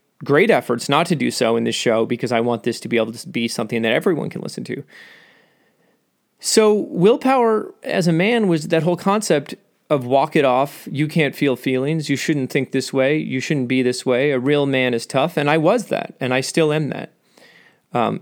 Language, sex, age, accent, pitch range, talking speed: English, male, 30-49, American, 125-185 Hz, 215 wpm